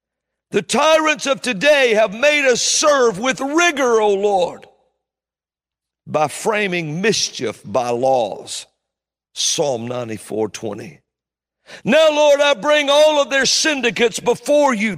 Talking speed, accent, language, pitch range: 125 wpm, American, English, 160-270 Hz